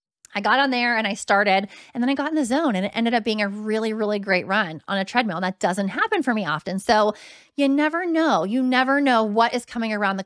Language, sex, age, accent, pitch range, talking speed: English, female, 20-39, American, 190-245 Hz, 265 wpm